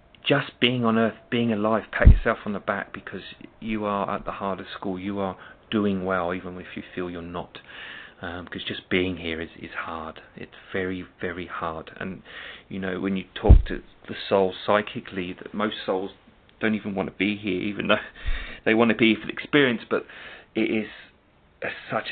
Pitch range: 90-105 Hz